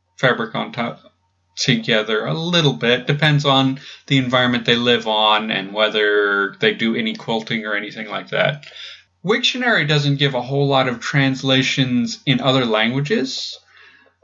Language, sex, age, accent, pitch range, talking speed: English, male, 30-49, American, 115-155 Hz, 150 wpm